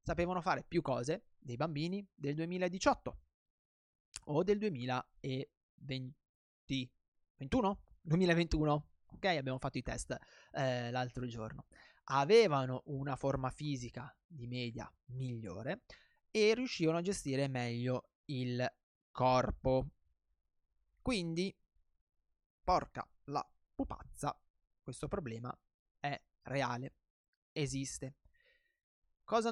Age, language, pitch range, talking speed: 20-39, Italian, 125-190 Hz, 90 wpm